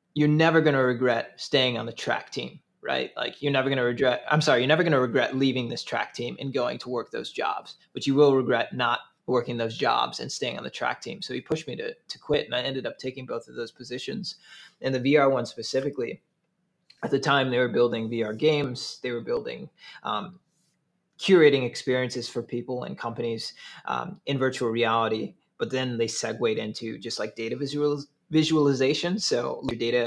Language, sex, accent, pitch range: English, male, American, 120-150 Hz